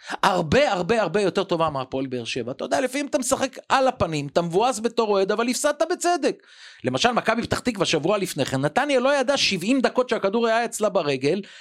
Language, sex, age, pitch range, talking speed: Hebrew, male, 40-59, 155-240 Hz, 195 wpm